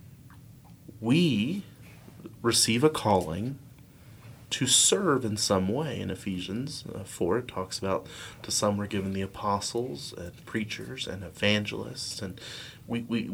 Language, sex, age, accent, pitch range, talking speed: English, male, 30-49, American, 105-130 Hz, 120 wpm